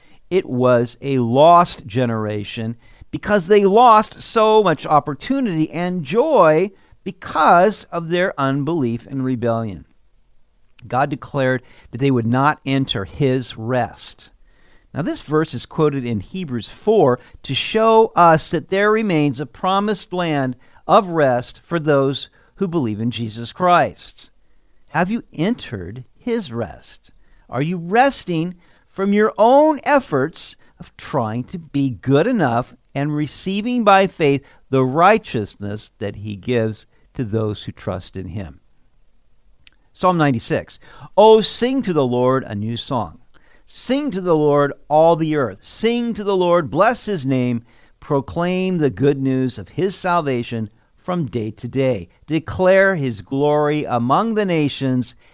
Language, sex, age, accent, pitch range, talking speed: English, male, 50-69, American, 120-180 Hz, 140 wpm